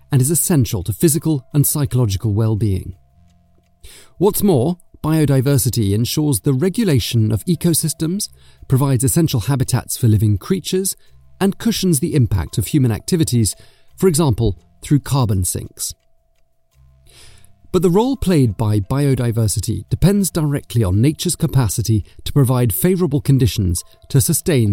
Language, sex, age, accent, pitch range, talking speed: English, male, 40-59, British, 100-155 Hz, 125 wpm